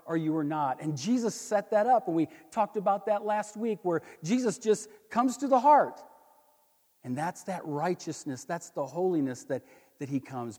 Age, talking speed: 50-69, 195 wpm